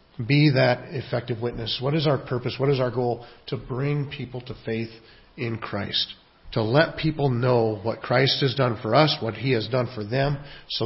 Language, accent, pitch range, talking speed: English, American, 125-175 Hz, 200 wpm